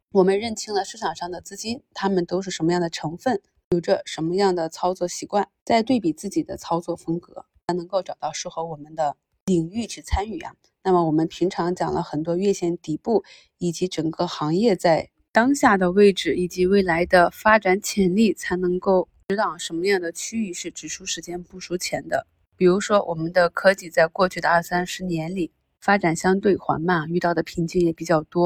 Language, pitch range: Chinese, 170-195 Hz